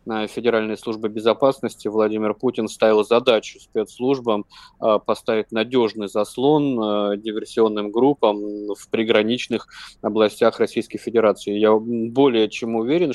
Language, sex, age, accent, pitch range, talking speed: Russian, male, 20-39, native, 110-130 Hz, 100 wpm